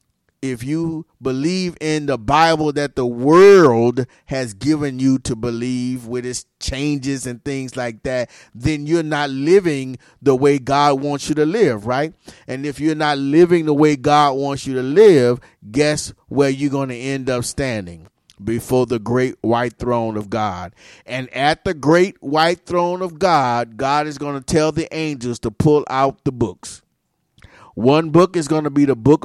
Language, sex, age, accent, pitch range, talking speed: English, male, 30-49, American, 135-175 Hz, 180 wpm